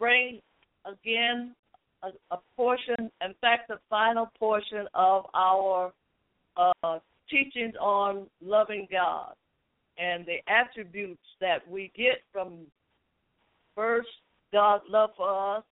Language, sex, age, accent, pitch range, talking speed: English, female, 60-79, American, 180-215 Hz, 110 wpm